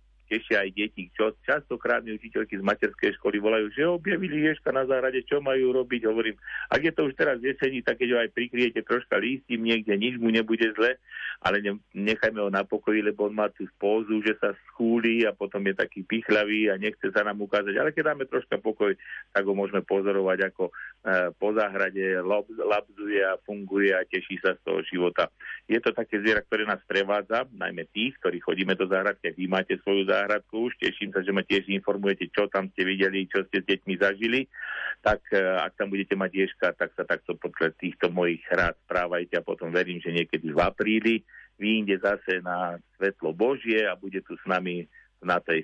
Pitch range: 95-115 Hz